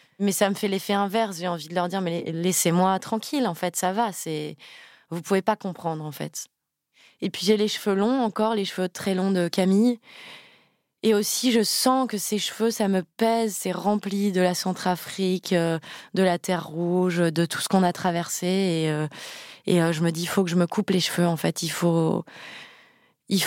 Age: 20-39